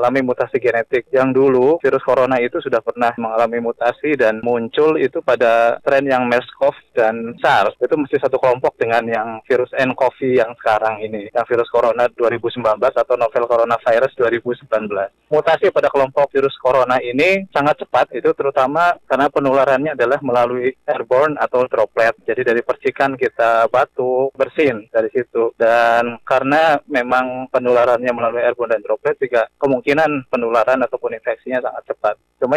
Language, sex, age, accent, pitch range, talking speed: Indonesian, male, 20-39, native, 115-150 Hz, 145 wpm